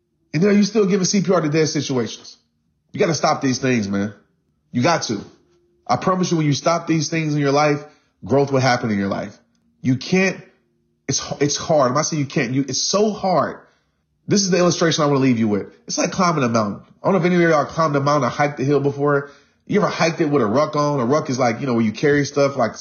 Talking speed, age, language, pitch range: 265 wpm, 30-49, English, 120-175 Hz